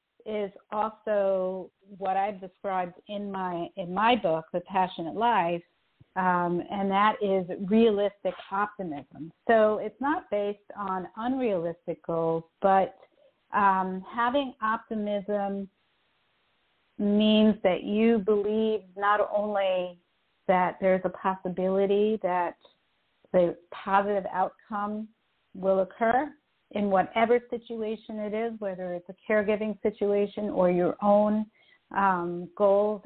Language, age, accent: English, 50-69, American